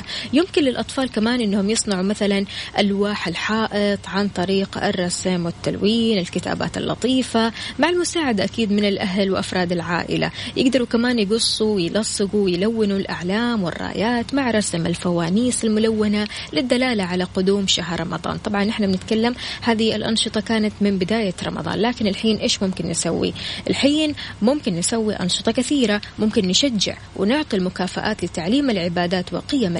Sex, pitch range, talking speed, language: female, 190-230 Hz, 125 wpm, Arabic